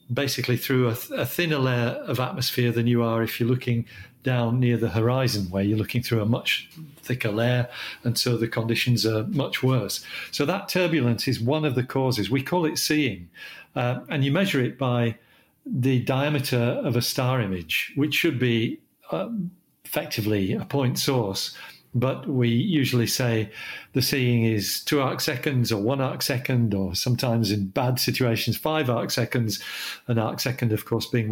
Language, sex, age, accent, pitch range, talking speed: English, male, 50-69, British, 115-140 Hz, 180 wpm